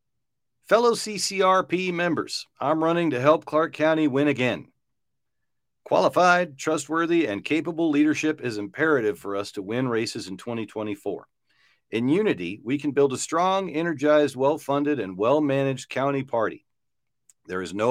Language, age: English, 50-69